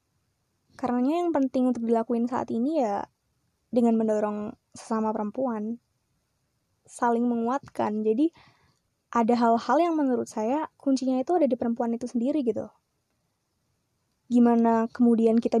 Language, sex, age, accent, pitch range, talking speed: Indonesian, female, 20-39, native, 225-270 Hz, 120 wpm